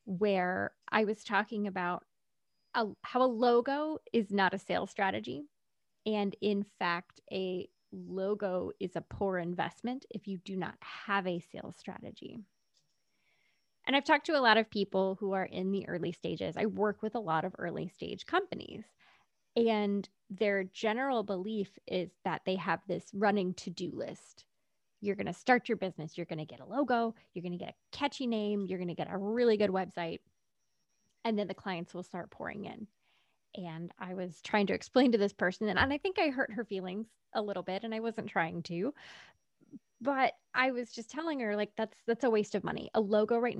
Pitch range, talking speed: 185-230 Hz, 190 wpm